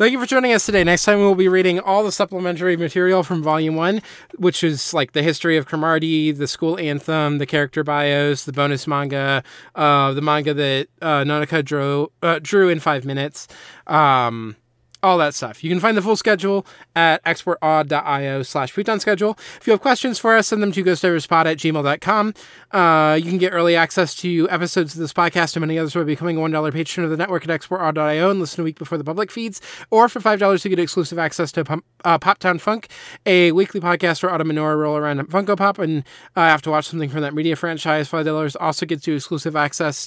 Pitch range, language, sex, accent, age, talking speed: 150-185 Hz, English, male, American, 20-39, 220 wpm